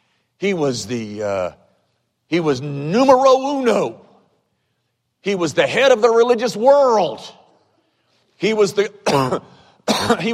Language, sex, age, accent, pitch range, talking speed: English, male, 50-69, American, 120-200 Hz, 115 wpm